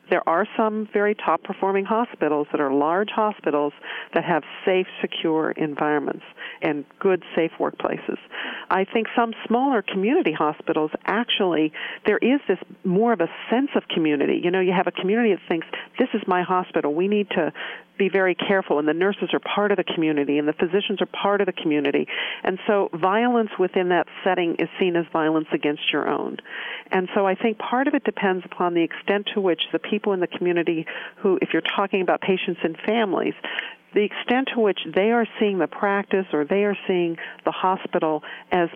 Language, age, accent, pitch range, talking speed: English, 50-69, American, 165-205 Hz, 190 wpm